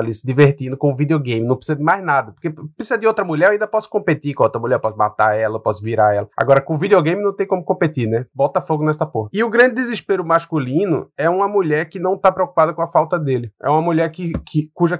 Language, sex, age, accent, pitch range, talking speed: Portuguese, male, 20-39, Brazilian, 140-185 Hz, 255 wpm